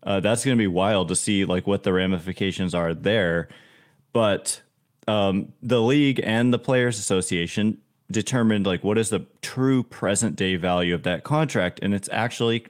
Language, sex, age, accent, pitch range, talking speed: English, male, 30-49, American, 95-115 Hz, 175 wpm